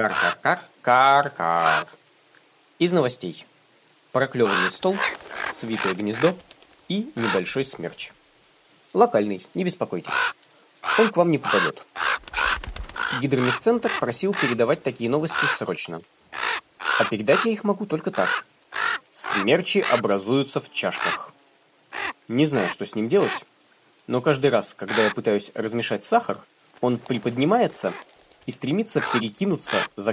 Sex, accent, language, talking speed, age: male, native, Russian, 120 wpm, 20-39